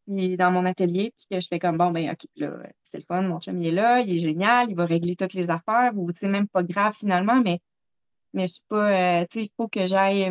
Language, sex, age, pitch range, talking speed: French, female, 20-39, 180-225 Hz, 275 wpm